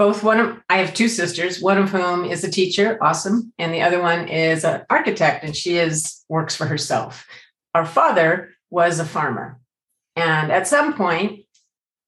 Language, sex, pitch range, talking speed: English, female, 160-205 Hz, 180 wpm